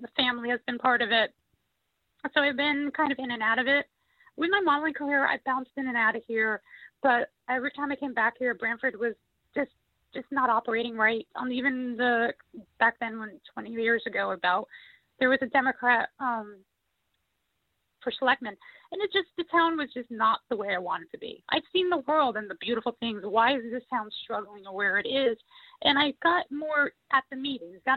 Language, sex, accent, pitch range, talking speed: English, female, American, 235-290 Hz, 210 wpm